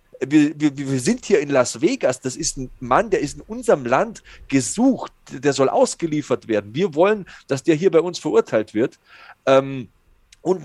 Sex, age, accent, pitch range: male, 40-59, German, 145-210 Hz